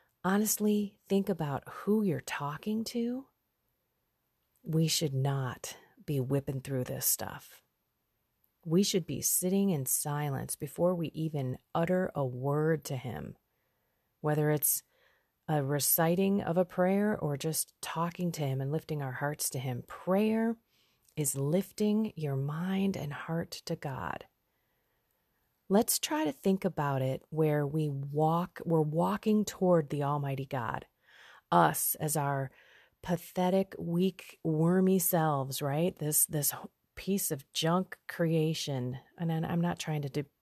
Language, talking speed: English, 135 wpm